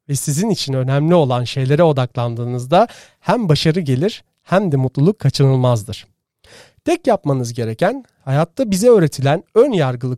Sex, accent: male, native